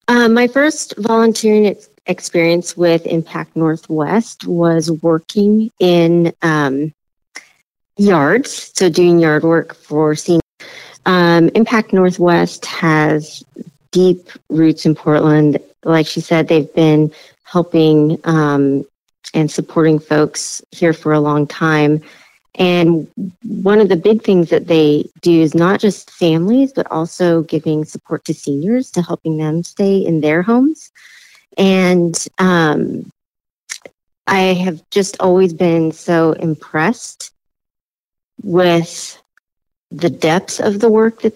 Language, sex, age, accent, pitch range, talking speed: English, female, 40-59, American, 155-195 Hz, 120 wpm